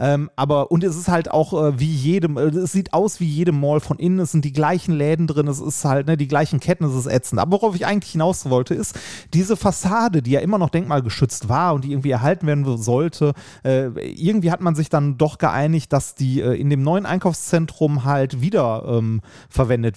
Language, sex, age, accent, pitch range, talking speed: German, male, 30-49, German, 140-180 Hz, 220 wpm